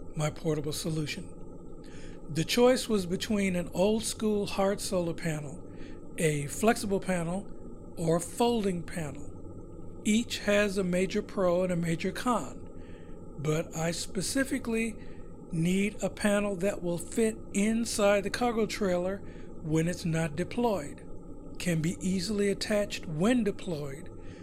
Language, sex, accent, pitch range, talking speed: English, male, American, 165-220 Hz, 125 wpm